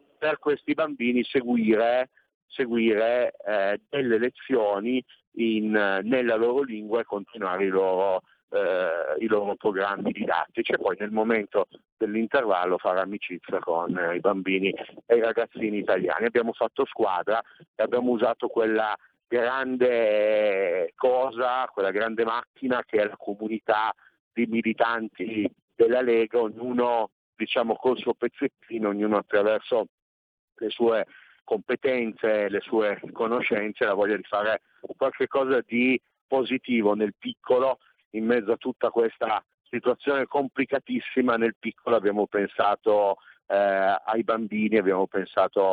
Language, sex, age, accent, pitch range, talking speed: Italian, male, 50-69, native, 105-125 Hz, 120 wpm